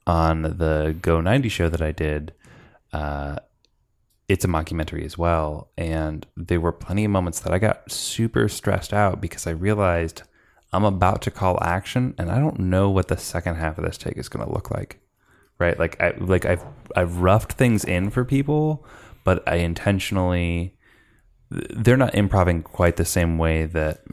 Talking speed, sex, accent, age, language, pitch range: 180 wpm, male, American, 20-39, English, 80-105 Hz